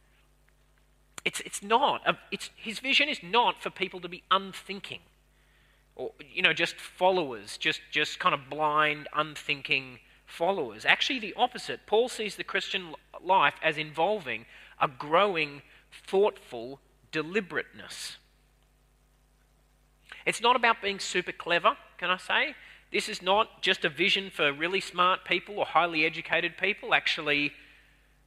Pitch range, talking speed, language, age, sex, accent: 150-210 Hz, 135 wpm, English, 30-49, male, Australian